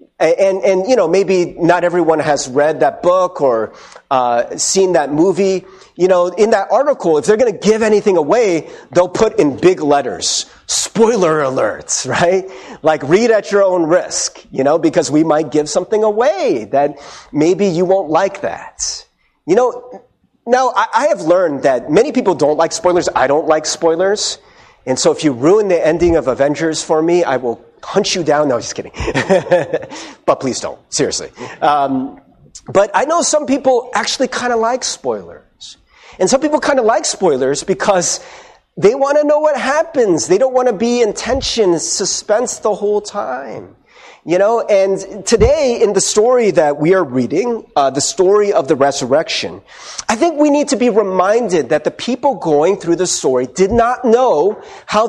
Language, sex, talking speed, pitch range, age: English, male, 180 wpm, 165-235 Hz, 40-59